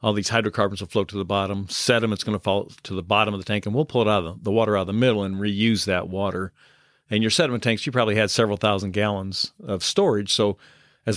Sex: male